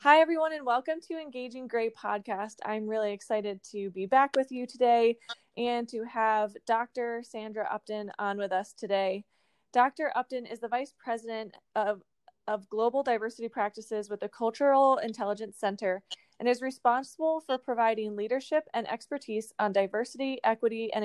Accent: American